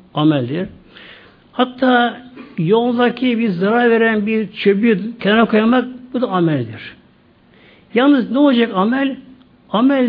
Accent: native